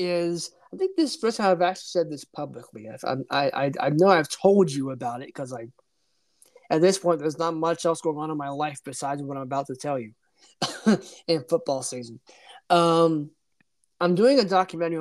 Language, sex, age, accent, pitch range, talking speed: English, male, 20-39, American, 145-175 Hz, 200 wpm